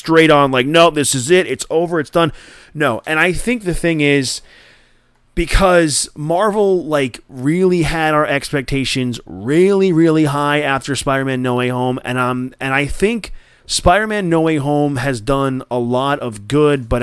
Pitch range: 130-170 Hz